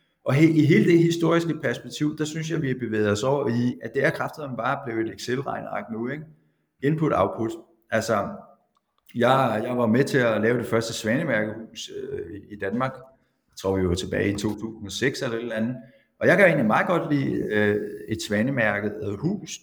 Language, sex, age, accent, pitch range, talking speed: Danish, male, 60-79, native, 105-145 Hz, 195 wpm